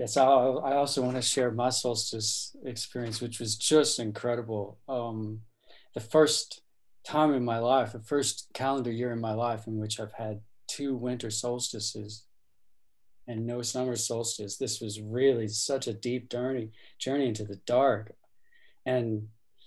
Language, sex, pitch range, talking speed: English, male, 115-135 Hz, 150 wpm